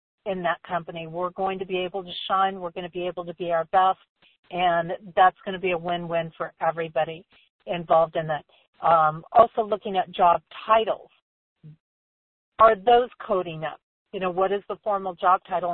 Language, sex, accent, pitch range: English, female, American, 180-220 Hz